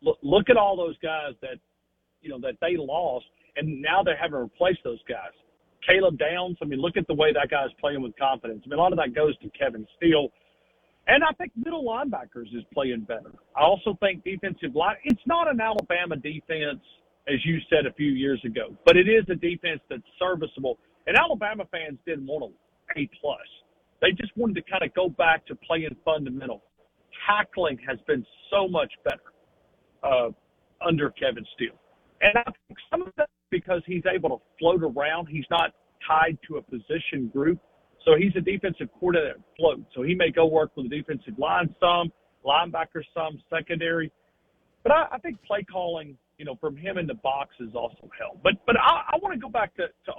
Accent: American